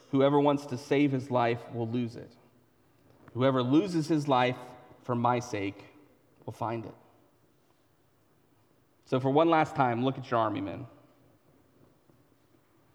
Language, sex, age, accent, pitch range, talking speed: English, male, 30-49, American, 120-150 Hz, 135 wpm